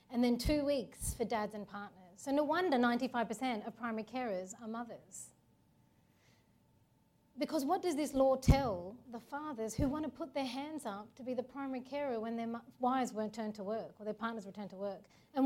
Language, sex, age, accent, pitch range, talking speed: English, female, 30-49, Australian, 210-265 Hz, 200 wpm